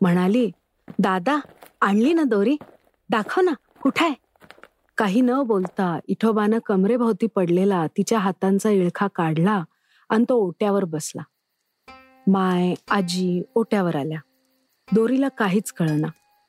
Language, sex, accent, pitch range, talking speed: Marathi, female, native, 185-230 Hz, 105 wpm